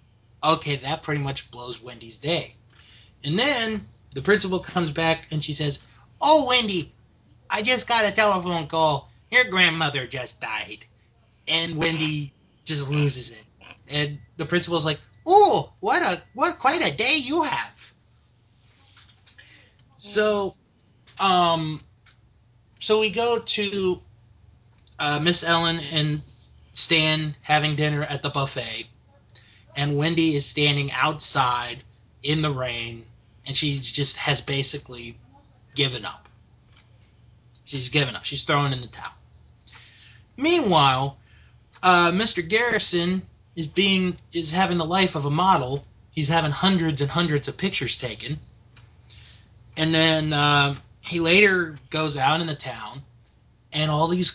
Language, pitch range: English, 115-165 Hz